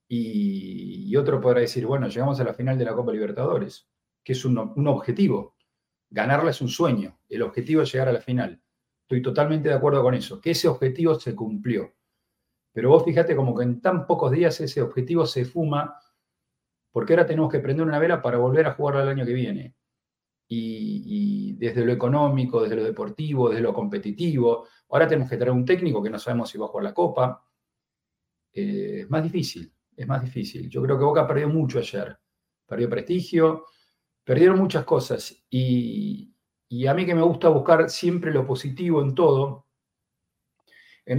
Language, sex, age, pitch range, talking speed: Spanish, male, 40-59, 125-165 Hz, 185 wpm